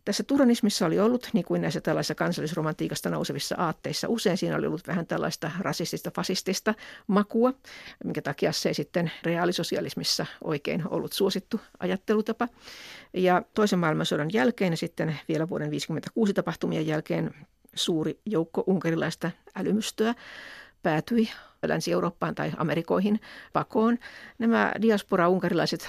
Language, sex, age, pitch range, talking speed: Finnish, female, 60-79, 170-225 Hz, 120 wpm